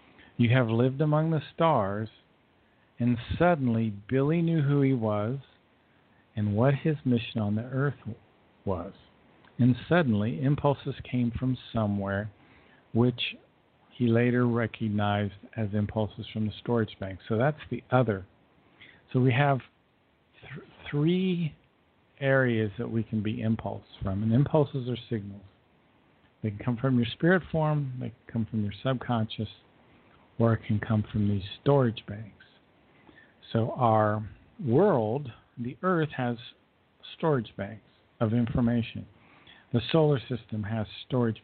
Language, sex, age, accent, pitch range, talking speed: English, male, 50-69, American, 105-130 Hz, 135 wpm